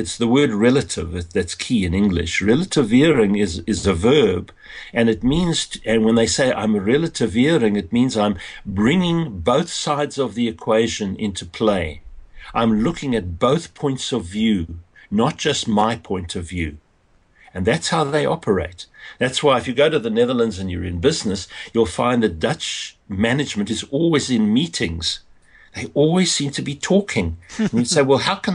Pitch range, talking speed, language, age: 95-125 Hz, 180 wpm, English, 60-79